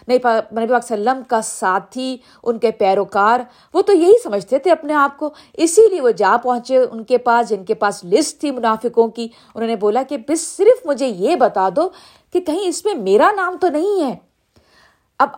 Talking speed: 160 wpm